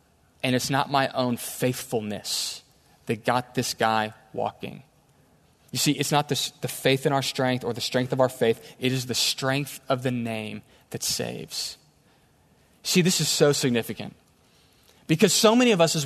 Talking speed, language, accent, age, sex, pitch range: 175 wpm, English, American, 20-39, male, 130-165 Hz